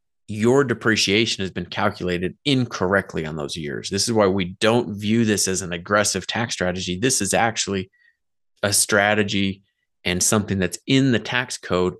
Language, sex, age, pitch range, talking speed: English, male, 30-49, 90-110 Hz, 165 wpm